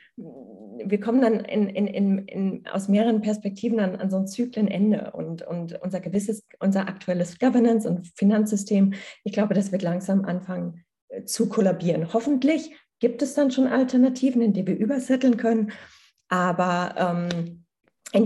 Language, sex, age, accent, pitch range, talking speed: German, female, 20-39, German, 190-230 Hz, 140 wpm